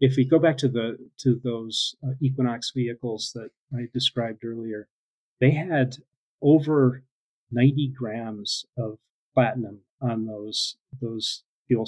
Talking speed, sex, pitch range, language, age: 125 wpm, male, 115-130 Hz, English, 40-59